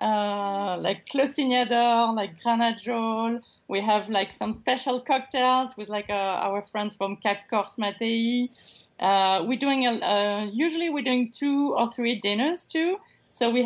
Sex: female